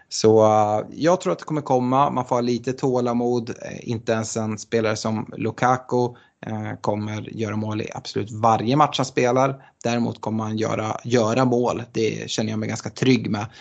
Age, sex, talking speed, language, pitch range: 20-39, male, 175 wpm, Swedish, 110-130 Hz